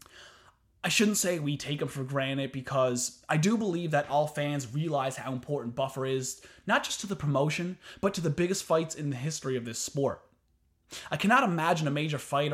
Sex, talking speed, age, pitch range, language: male, 200 wpm, 20-39, 125-160 Hz, English